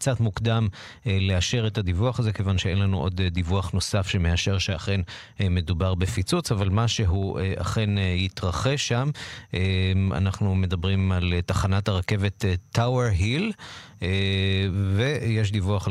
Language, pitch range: Hebrew, 90-110 Hz